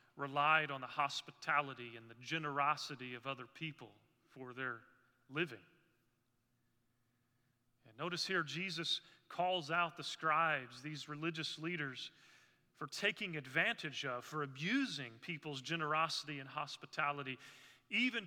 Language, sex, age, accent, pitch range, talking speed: English, male, 30-49, American, 120-150 Hz, 115 wpm